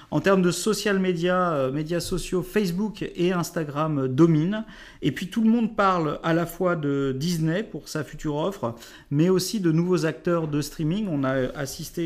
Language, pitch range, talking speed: French, 145-180 Hz, 180 wpm